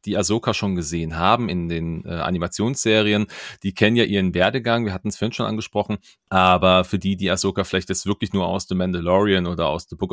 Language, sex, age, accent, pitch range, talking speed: German, male, 30-49, German, 95-115 Hz, 215 wpm